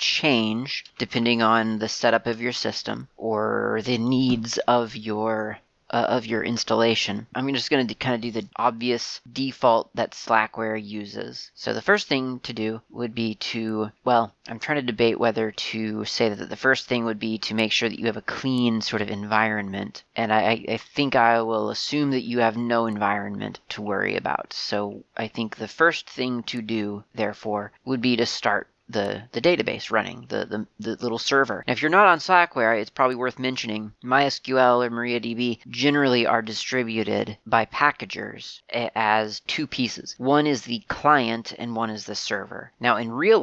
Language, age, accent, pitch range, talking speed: English, 30-49, American, 110-125 Hz, 185 wpm